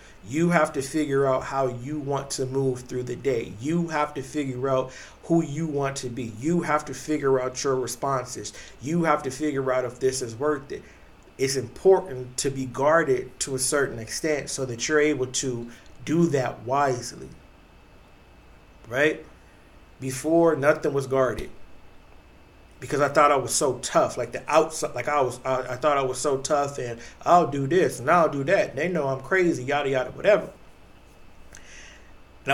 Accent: American